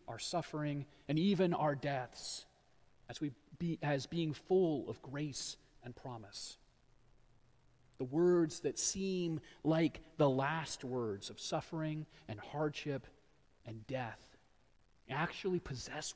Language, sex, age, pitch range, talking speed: English, male, 40-59, 125-155 Hz, 120 wpm